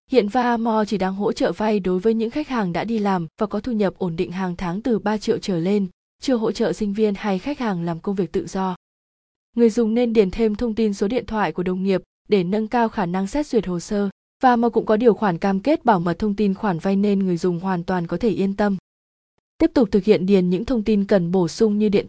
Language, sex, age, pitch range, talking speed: Vietnamese, female, 20-39, 190-225 Hz, 270 wpm